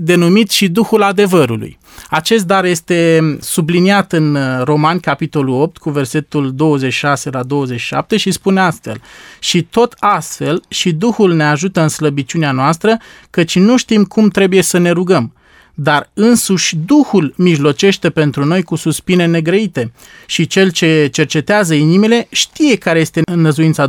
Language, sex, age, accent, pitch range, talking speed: Romanian, male, 20-39, native, 150-190 Hz, 140 wpm